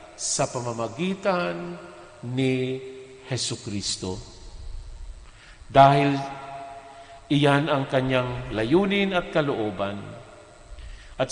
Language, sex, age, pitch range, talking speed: Filipino, male, 50-69, 110-140 Hz, 70 wpm